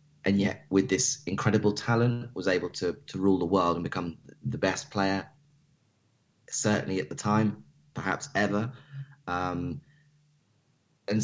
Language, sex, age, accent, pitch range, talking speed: English, male, 20-39, British, 95-120 Hz, 140 wpm